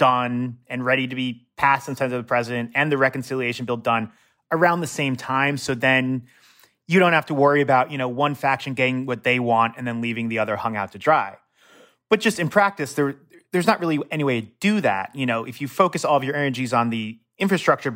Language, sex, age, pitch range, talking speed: English, male, 30-49, 115-140 Hz, 235 wpm